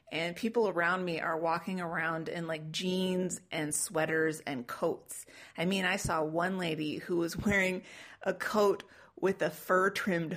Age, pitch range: 30-49, 155-190 Hz